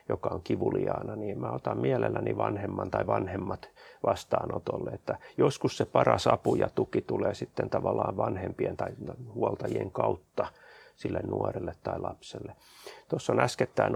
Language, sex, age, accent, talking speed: Finnish, male, 30-49, native, 140 wpm